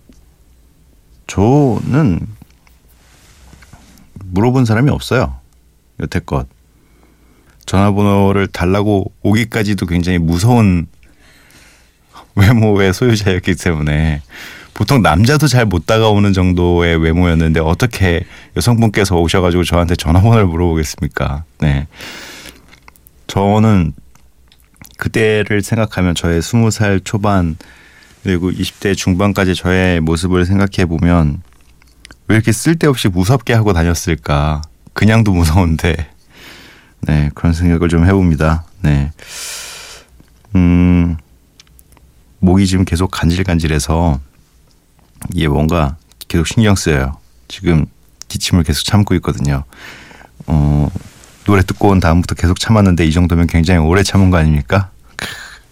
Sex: male